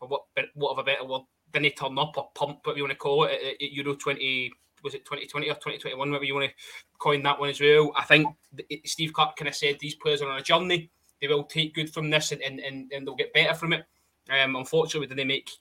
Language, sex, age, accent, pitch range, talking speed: English, male, 20-39, British, 145-170 Hz, 265 wpm